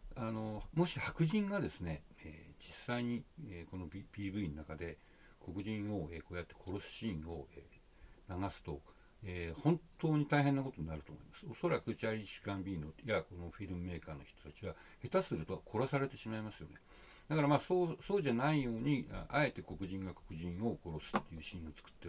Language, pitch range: Japanese, 85-125 Hz